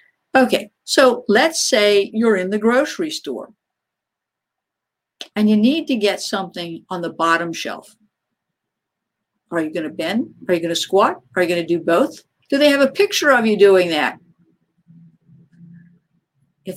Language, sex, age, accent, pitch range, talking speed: English, female, 50-69, American, 170-225 Hz, 160 wpm